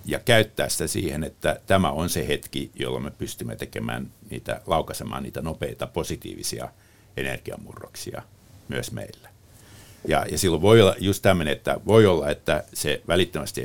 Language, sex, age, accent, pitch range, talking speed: Finnish, male, 60-79, native, 80-110 Hz, 150 wpm